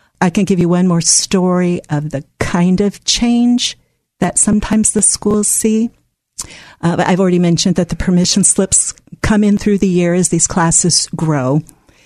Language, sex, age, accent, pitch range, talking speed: English, female, 50-69, American, 160-200 Hz, 170 wpm